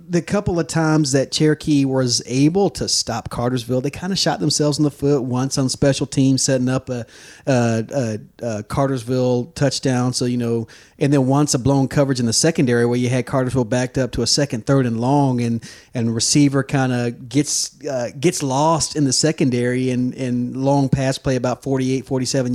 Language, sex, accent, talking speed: English, male, American, 200 wpm